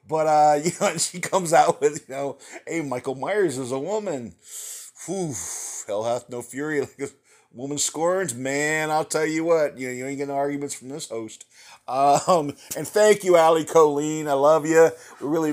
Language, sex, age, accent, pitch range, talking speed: English, male, 50-69, American, 125-155 Hz, 195 wpm